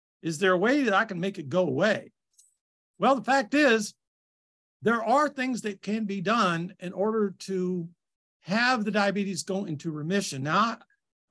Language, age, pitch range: English, 50-69, 165-220 Hz